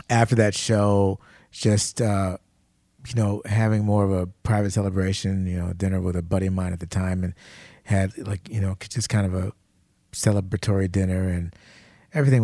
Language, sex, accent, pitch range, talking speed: English, male, American, 95-115 Hz, 180 wpm